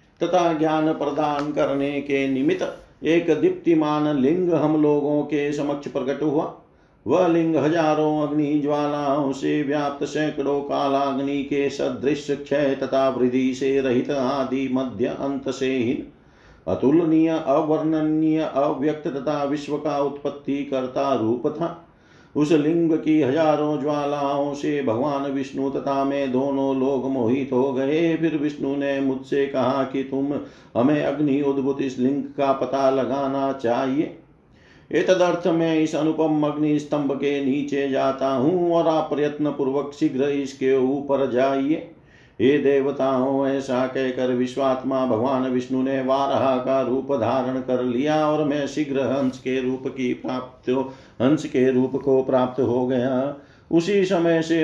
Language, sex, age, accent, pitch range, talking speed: Hindi, male, 50-69, native, 130-150 Hz, 140 wpm